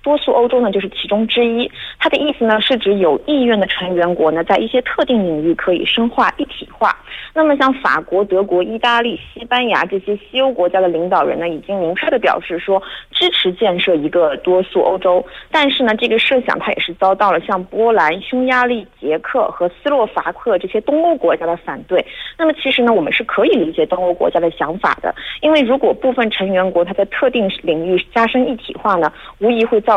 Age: 20-39